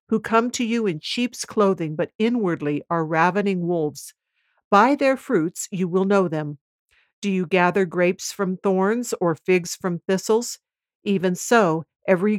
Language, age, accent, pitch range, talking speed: English, 60-79, American, 170-220 Hz, 155 wpm